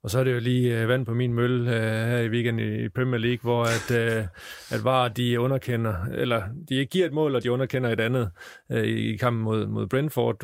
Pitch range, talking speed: 115-125 Hz, 225 wpm